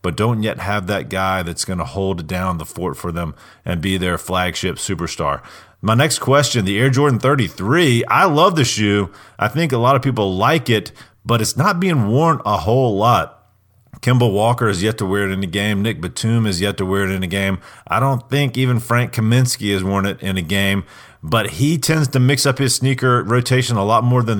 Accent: American